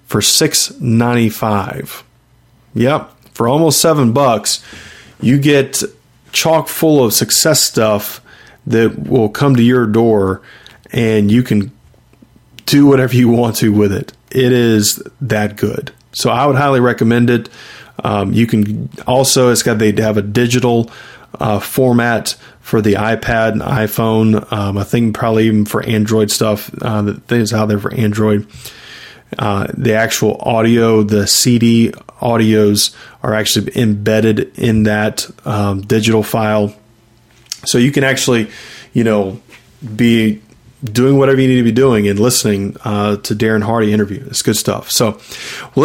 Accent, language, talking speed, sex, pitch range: American, English, 150 wpm, male, 105-130 Hz